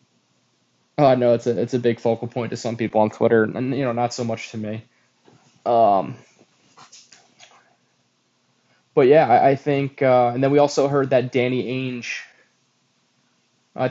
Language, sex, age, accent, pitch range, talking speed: English, male, 10-29, American, 110-130 Hz, 170 wpm